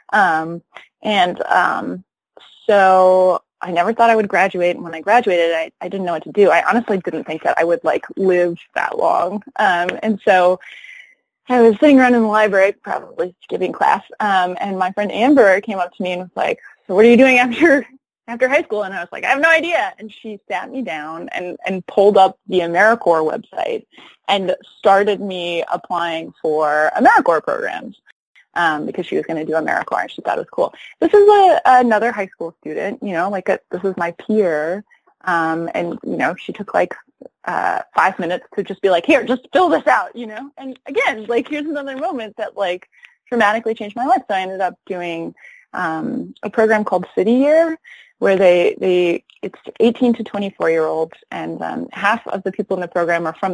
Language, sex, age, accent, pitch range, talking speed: English, female, 20-39, American, 175-240 Hz, 205 wpm